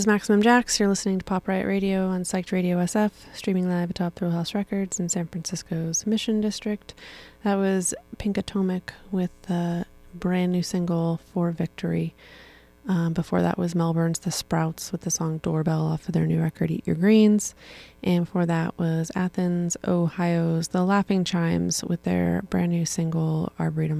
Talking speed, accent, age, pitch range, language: 175 wpm, American, 20-39, 160-185 Hz, German